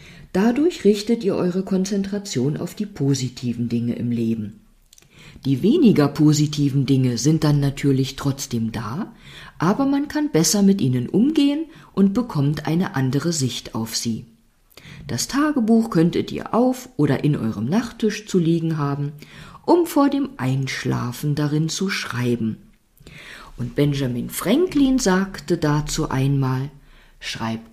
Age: 50-69